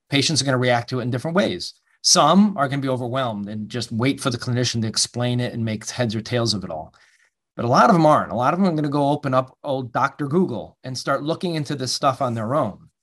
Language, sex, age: English, male, 30-49